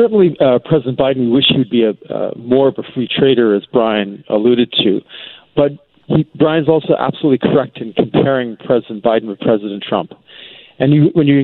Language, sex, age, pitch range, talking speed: English, male, 40-59, 110-130 Hz, 185 wpm